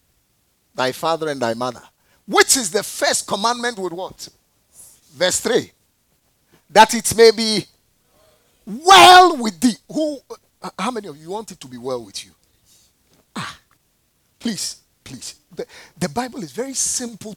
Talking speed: 150 wpm